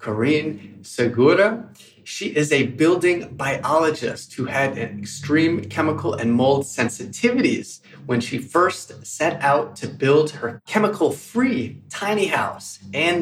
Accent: American